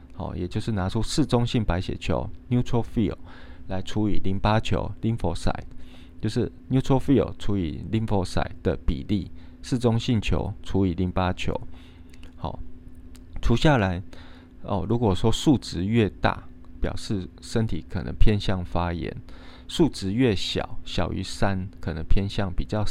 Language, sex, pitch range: Chinese, male, 85-105 Hz